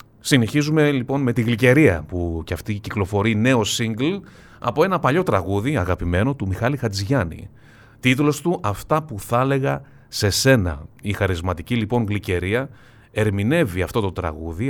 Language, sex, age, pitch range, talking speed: Greek, male, 30-49, 100-130 Hz, 145 wpm